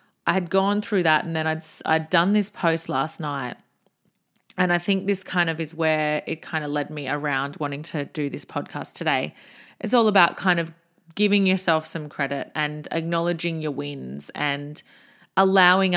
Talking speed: 190 wpm